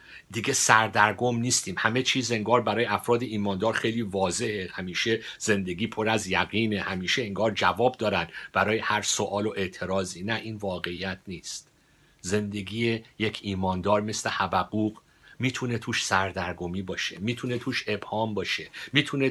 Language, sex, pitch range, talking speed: Persian, male, 95-115 Hz, 135 wpm